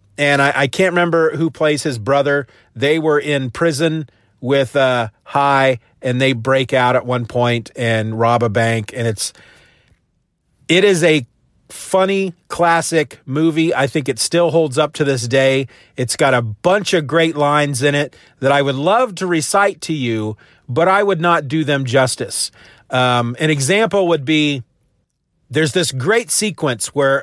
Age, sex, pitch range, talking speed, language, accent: 40-59, male, 125-160 Hz, 170 wpm, English, American